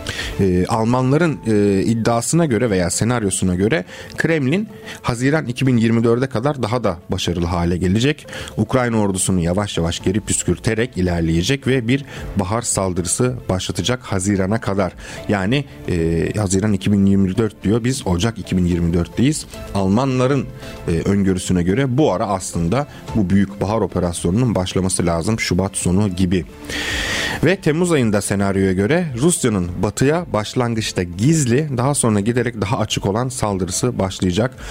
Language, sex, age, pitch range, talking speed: Turkish, male, 40-59, 95-120 Hz, 125 wpm